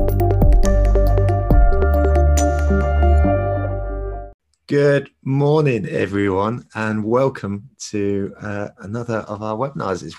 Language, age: English, 30-49